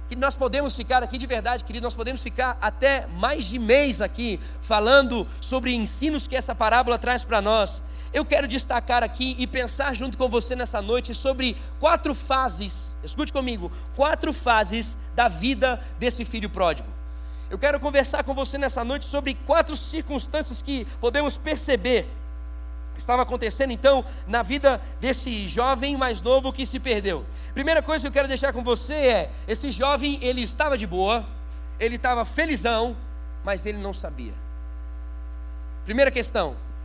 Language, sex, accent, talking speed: Portuguese, male, Brazilian, 155 wpm